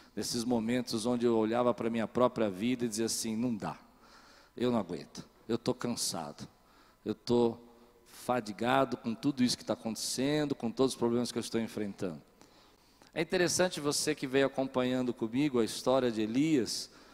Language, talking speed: Portuguese, 170 wpm